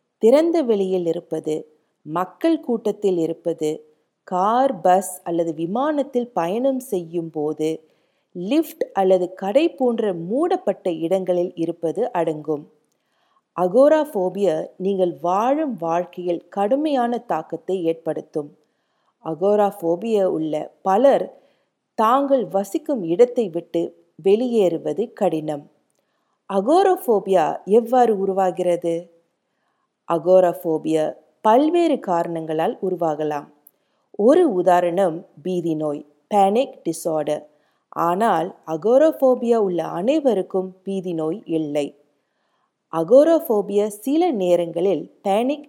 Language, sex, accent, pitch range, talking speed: Tamil, female, native, 165-235 Hz, 75 wpm